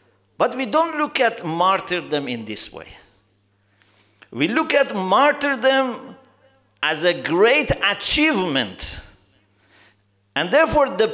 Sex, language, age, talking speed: male, English, 50-69, 110 wpm